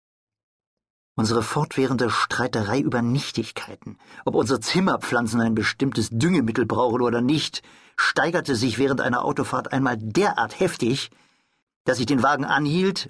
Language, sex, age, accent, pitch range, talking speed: German, male, 50-69, German, 110-135 Hz, 125 wpm